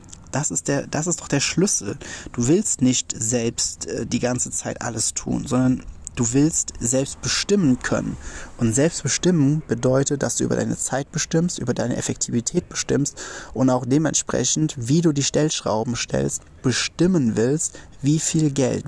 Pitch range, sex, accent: 115-150 Hz, male, German